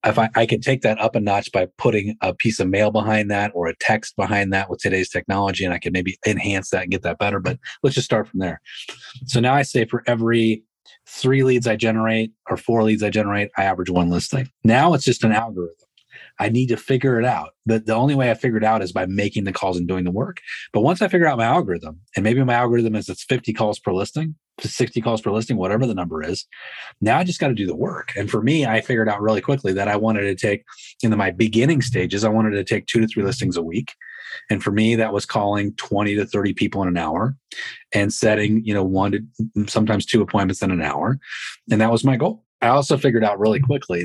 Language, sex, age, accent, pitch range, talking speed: English, male, 30-49, American, 100-120 Hz, 250 wpm